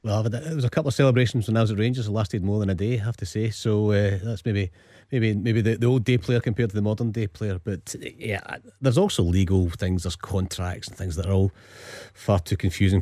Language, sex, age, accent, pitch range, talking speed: English, male, 30-49, British, 100-120 Hz, 260 wpm